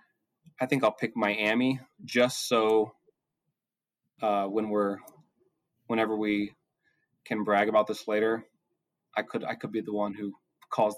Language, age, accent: English, 20-39, American